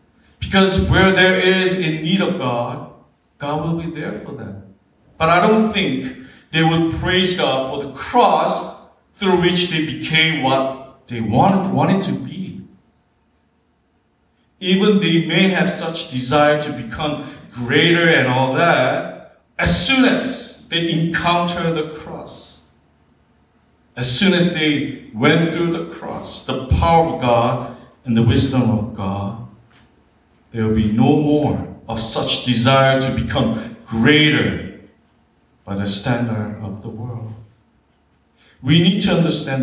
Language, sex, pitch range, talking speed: English, male, 115-170 Hz, 140 wpm